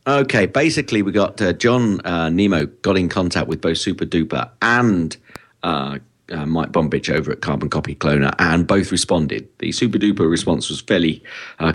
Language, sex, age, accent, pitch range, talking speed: English, male, 40-59, British, 80-105 Hz, 170 wpm